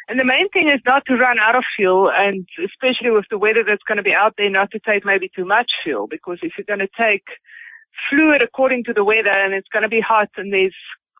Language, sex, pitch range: English, female, 180-235 Hz